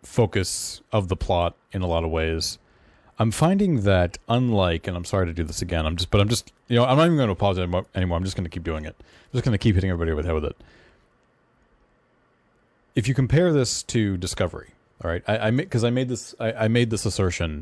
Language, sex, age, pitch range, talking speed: English, male, 30-49, 85-110 Hz, 245 wpm